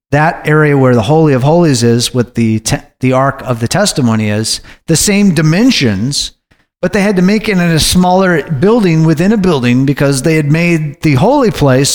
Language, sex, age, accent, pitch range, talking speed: English, male, 40-59, American, 120-155 Hz, 200 wpm